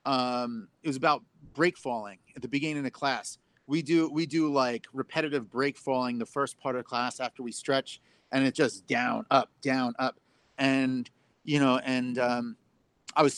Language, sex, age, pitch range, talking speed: English, male, 30-49, 135-165 Hz, 190 wpm